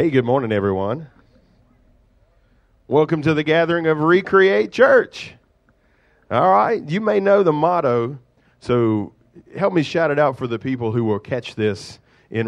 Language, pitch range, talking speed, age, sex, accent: English, 110-135 Hz, 155 wpm, 40-59, male, American